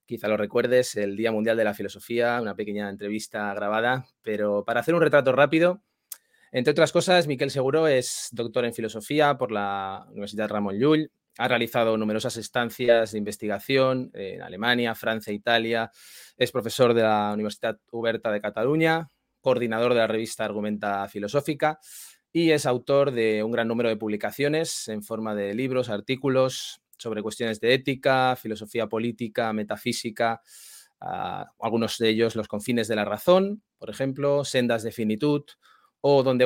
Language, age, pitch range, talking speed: Spanish, 20-39, 110-145 Hz, 155 wpm